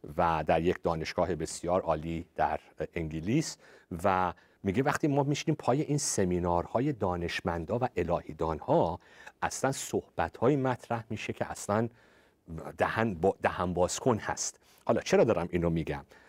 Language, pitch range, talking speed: Persian, 90-140 Hz, 135 wpm